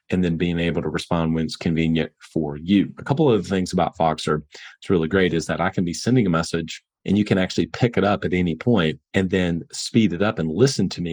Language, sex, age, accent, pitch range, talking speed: English, male, 40-59, American, 80-90 Hz, 255 wpm